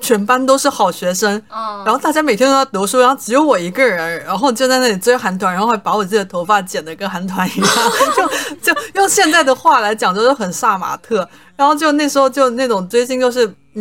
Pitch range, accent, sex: 185-235 Hz, native, female